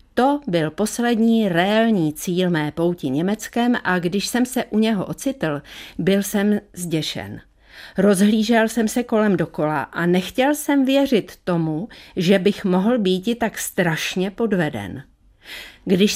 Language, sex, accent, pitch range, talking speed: Czech, female, native, 170-235 Hz, 135 wpm